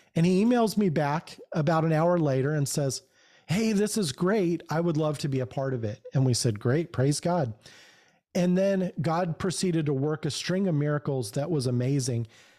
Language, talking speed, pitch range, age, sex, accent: English, 205 wpm, 140-180 Hz, 40-59, male, American